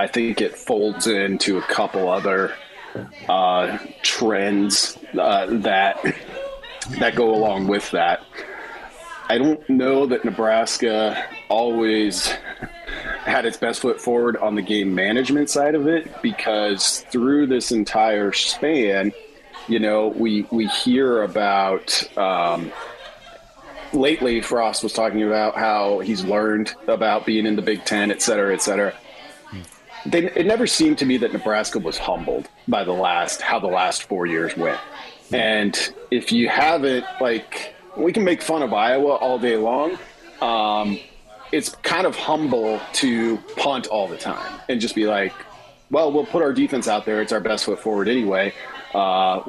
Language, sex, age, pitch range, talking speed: English, male, 30-49, 105-125 Hz, 155 wpm